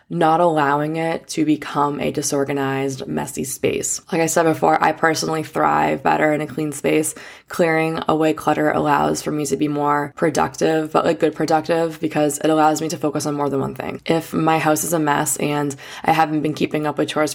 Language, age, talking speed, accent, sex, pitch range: English, 20-39, 210 wpm, American, female, 145-160 Hz